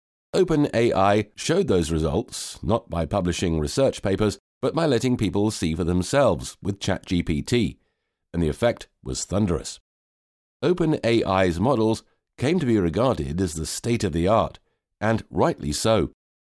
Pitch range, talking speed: 85-110 Hz, 130 wpm